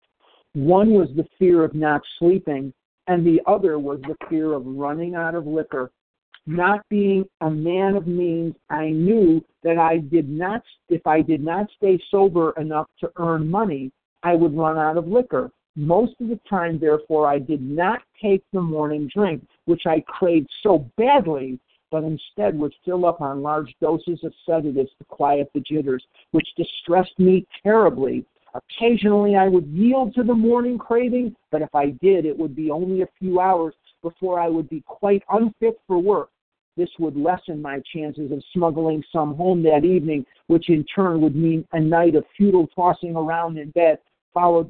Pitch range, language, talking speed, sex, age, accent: 150-185 Hz, English, 180 wpm, male, 50-69, American